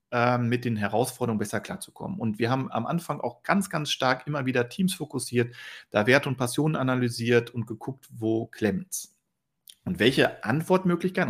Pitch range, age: 120-175 Hz, 40-59